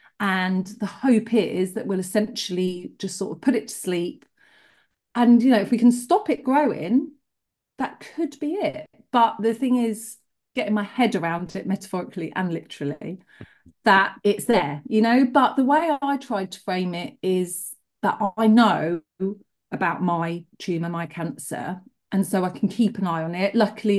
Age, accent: 30-49, British